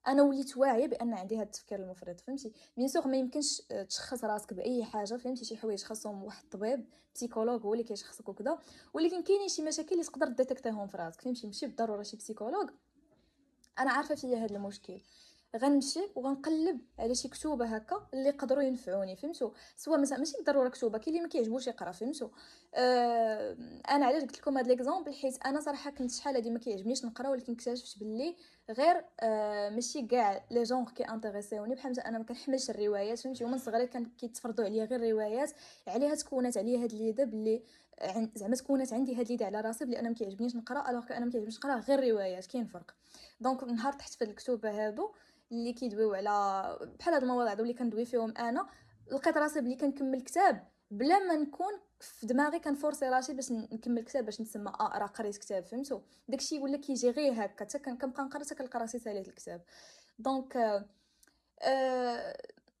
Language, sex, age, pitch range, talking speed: Indonesian, female, 10-29, 225-280 Hz, 160 wpm